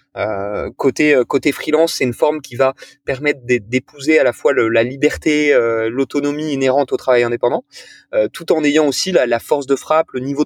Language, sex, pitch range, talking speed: French, male, 125-160 Hz, 200 wpm